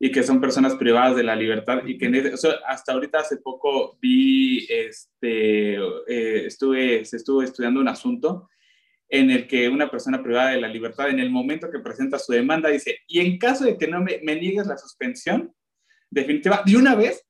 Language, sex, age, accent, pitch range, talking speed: Spanish, male, 20-39, Mexican, 135-215 Hz, 195 wpm